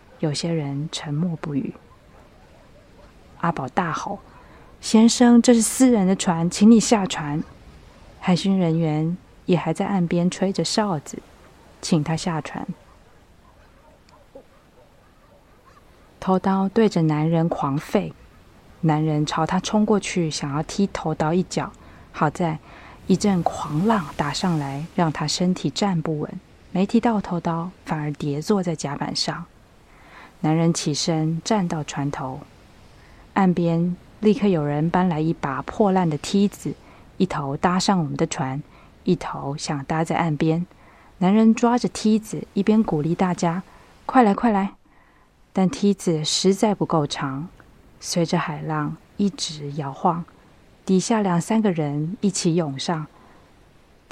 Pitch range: 155-195 Hz